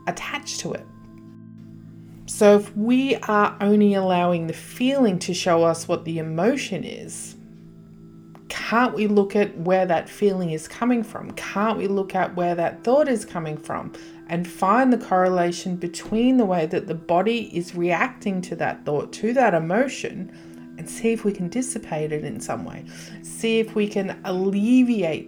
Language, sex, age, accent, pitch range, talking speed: English, female, 30-49, Australian, 165-210 Hz, 170 wpm